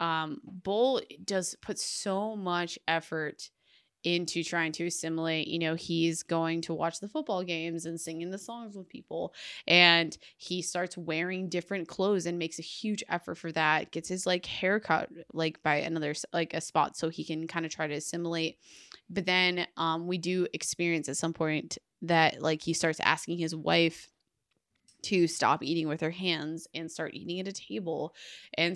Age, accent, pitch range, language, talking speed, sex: 20-39, American, 160-180 Hz, English, 180 wpm, female